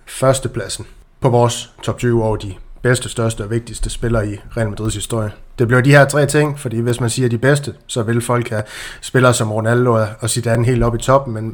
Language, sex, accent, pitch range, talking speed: Danish, male, native, 110-125 Hz, 210 wpm